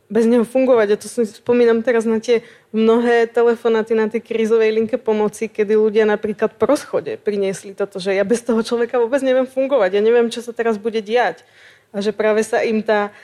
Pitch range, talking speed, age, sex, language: 210-235 Hz, 210 wpm, 20-39, female, Slovak